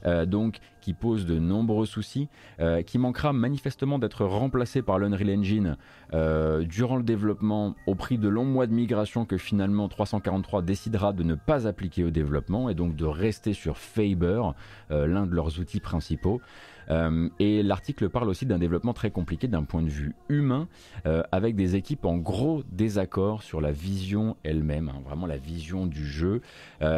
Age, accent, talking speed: 30-49, French, 180 wpm